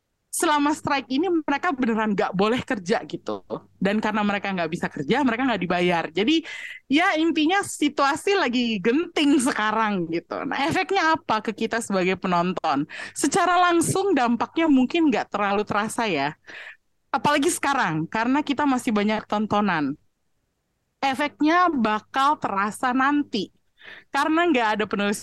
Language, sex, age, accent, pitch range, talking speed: Indonesian, female, 20-39, native, 205-290 Hz, 135 wpm